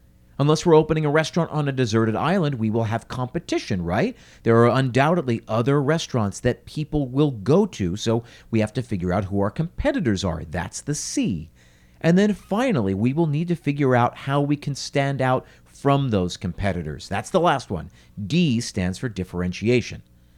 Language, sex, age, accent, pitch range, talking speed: English, male, 50-69, American, 110-160 Hz, 185 wpm